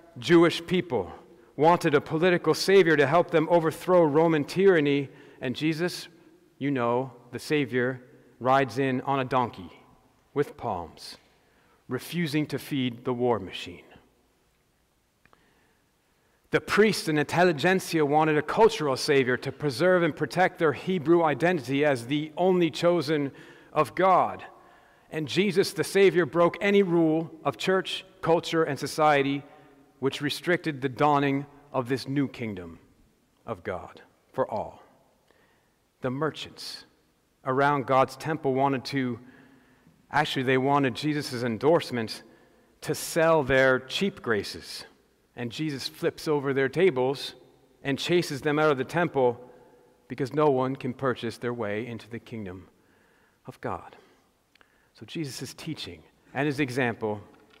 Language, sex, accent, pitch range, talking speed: English, male, American, 130-165 Hz, 130 wpm